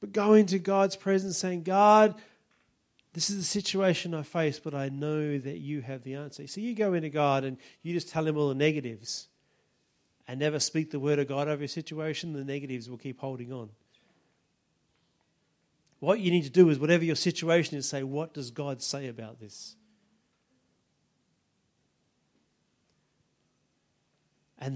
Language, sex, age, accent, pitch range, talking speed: English, male, 40-59, Australian, 120-155 Hz, 165 wpm